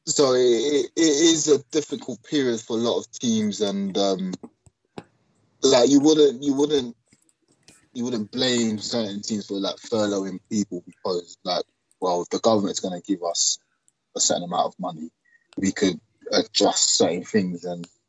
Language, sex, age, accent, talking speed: English, male, 20-39, British, 165 wpm